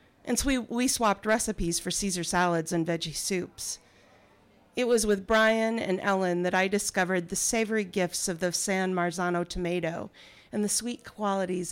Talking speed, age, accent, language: 165 wpm, 40-59, American, English